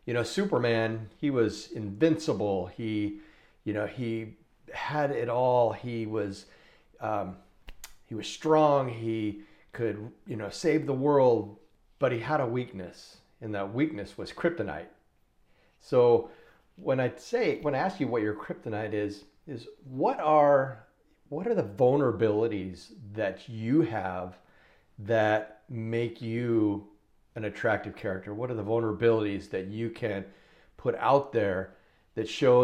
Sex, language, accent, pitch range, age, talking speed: male, English, American, 105-125 Hz, 40-59, 140 wpm